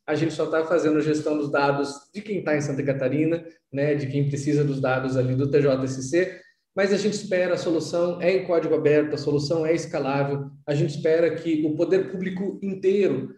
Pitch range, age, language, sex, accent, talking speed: 140-170 Hz, 20-39, Portuguese, male, Brazilian, 205 wpm